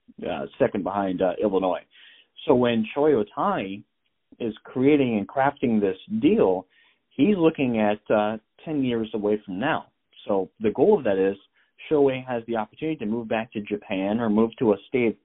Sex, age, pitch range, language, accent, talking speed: male, 40-59, 105-145 Hz, English, American, 175 wpm